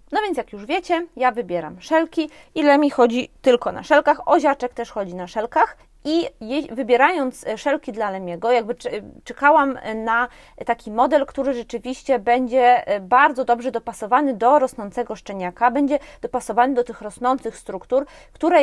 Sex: female